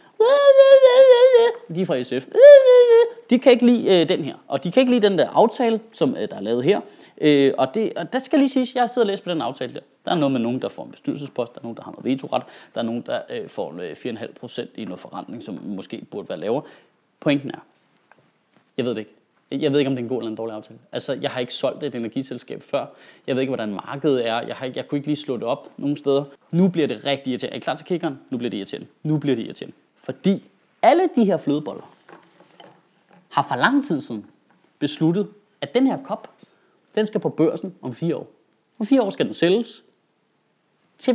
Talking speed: 230 wpm